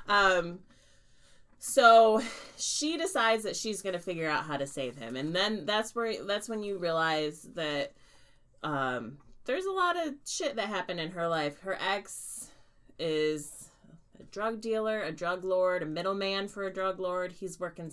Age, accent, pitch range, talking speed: 30-49, American, 145-190 Hz, 170 wpm